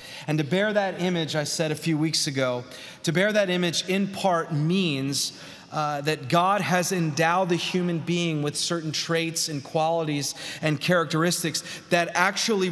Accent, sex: American, male